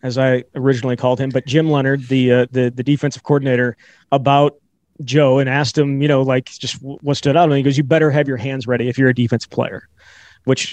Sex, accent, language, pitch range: male, American, English, 130-145 Hz